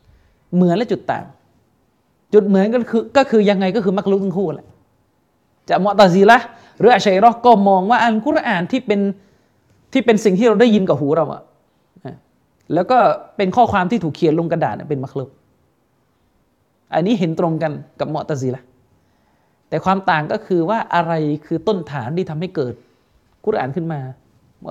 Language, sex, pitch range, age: Thai, male, 140-220 Hz, 20-39